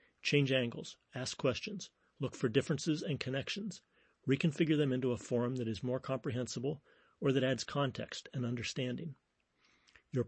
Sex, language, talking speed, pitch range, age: male, English, 145 wpm, 120-140 Hz, 40-59